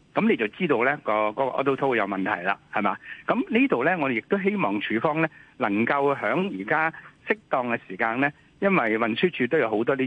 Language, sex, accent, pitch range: Chinese, male, native, 110-155 Hz